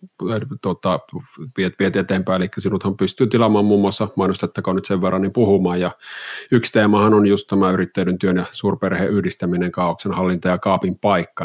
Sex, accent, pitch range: male, native, 90-110 Hz